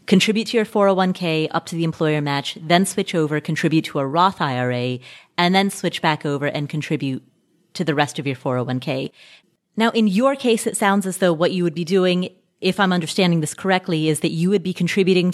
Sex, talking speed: female, 210 wpm